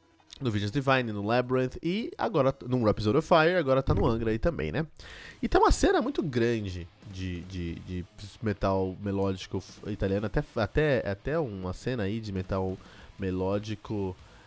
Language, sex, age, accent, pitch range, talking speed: Portuguese, male, 20-39, Brazilian, 95-120 Hz, 160 wpm